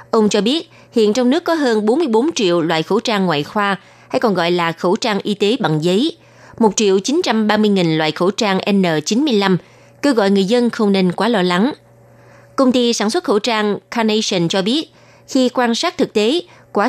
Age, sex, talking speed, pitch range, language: 20-39, female, 205 wpm, 185-235 Hz, Vietnamese